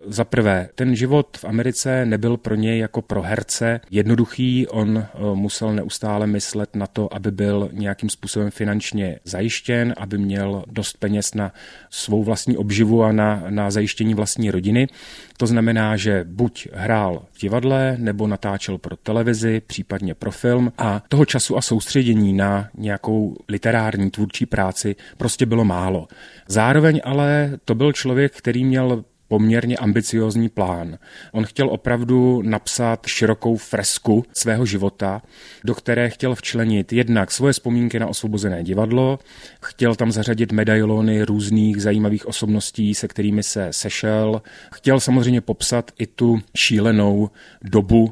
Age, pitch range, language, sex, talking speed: 30-49, 105-120 Hz, Czech, male, 140 wpm